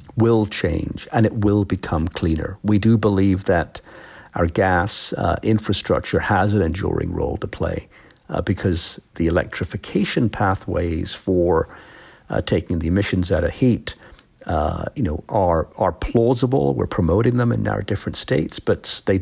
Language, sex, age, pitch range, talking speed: English, male, 60-79, 85-105 Hz, 155 wpm